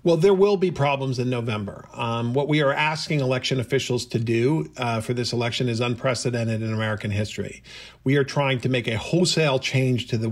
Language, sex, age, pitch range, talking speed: English, male, 50-69, 120-140 Hz, 205 wpm